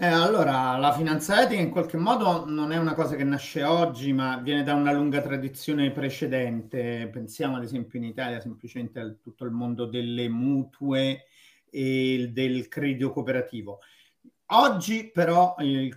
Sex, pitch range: male, 125-155 Hz